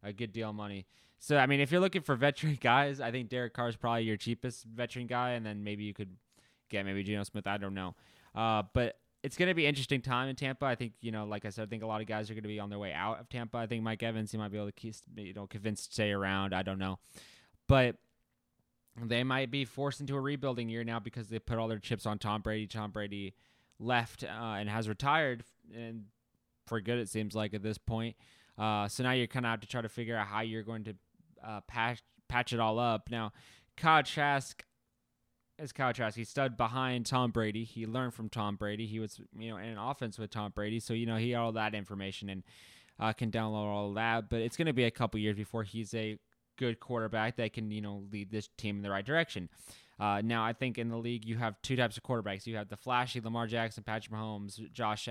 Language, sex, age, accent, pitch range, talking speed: English, male, 20-39, American, 105-120 Hz, 250 wpm